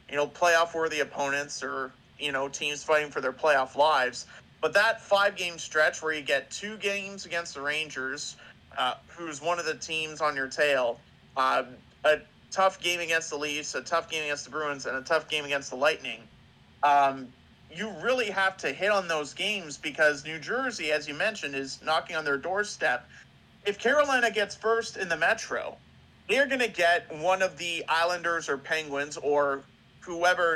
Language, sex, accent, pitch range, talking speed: English, male, American, 145-175 Hz, 185 wpm